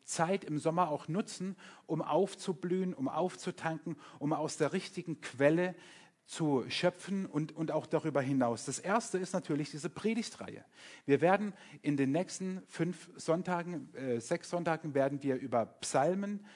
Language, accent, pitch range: German, German, 145-185 Hz